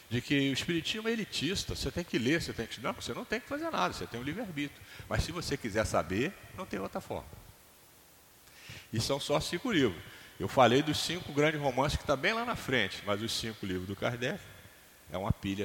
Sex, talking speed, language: male, 225 wpm, Portuguese